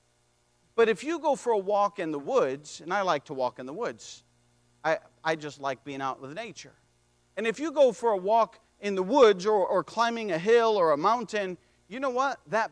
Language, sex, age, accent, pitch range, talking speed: English, male, 40-59, American, 170-235 Hz, 225 wpm